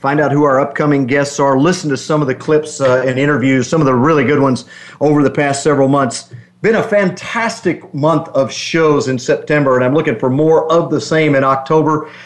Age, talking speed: 50-69, 220 wpm